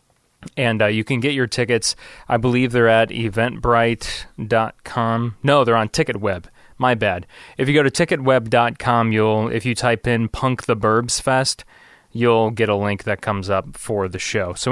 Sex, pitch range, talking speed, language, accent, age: male, 105-125 Hz, 170 wpm, English, American, 20-39